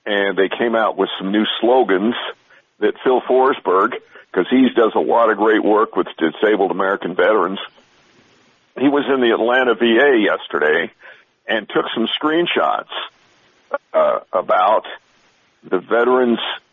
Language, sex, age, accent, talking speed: English, male, 50-69, American, 135 wpm